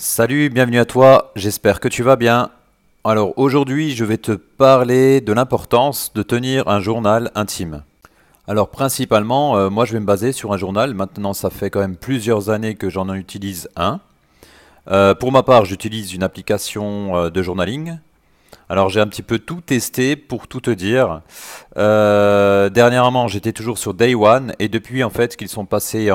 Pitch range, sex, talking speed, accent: 95-120 Hz, male, 180 wpm, French